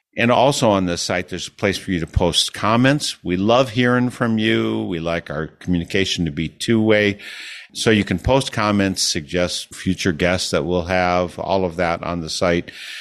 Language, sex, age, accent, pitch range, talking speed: English, male, 50-69, American, 80-100 Hz, 195 wpm